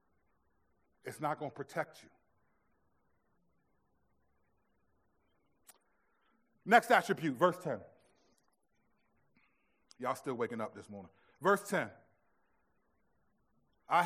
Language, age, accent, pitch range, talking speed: English, 40-59, American, 145-215 Hz, 75 wpm